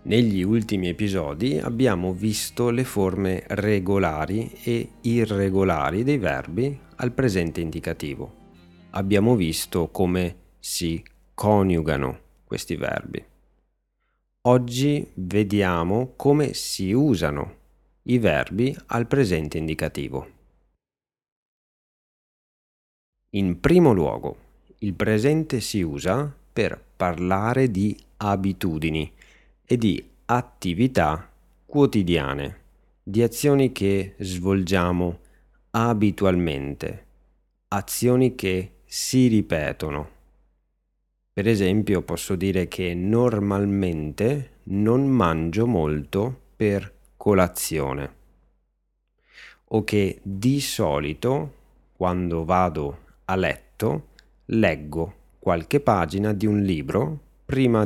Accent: native